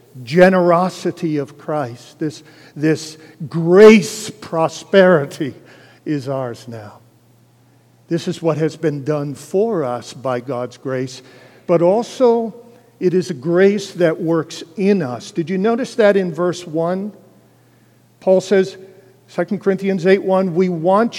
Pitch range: 165-220 Hz